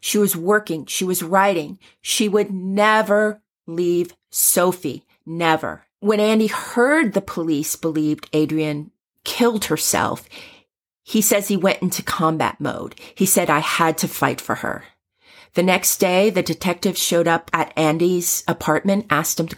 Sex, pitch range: female, 155-195 Hz